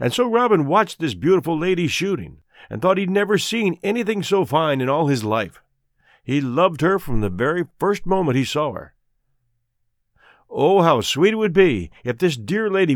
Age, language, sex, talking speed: 50-69, English, male, 190 wpm